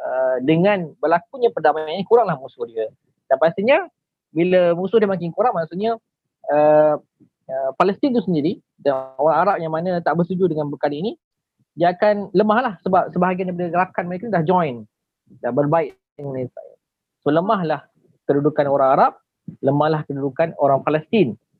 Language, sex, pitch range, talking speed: Malay, male, 140-185 Hz, 150 wpm